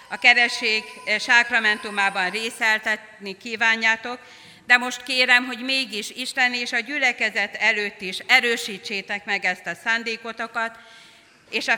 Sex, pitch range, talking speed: female, 195-245 Hz, 115 wpm